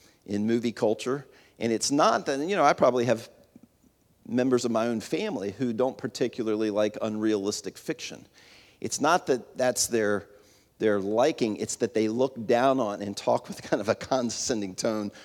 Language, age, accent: English, 50-69, American